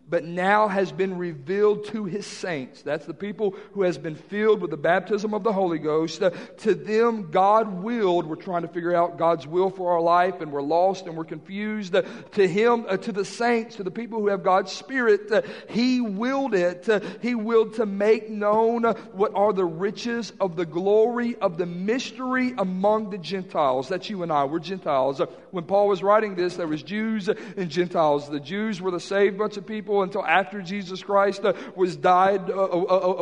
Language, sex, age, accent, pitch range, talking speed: English, male, 50-69, American, 180-215 Hz, 200 wpm